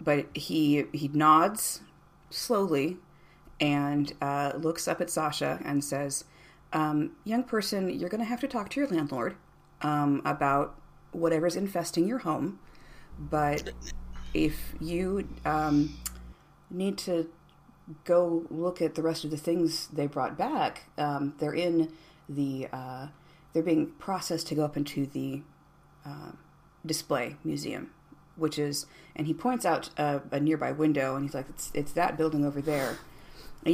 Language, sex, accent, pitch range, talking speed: English, female, American, 145-165 Hz, 150 wpm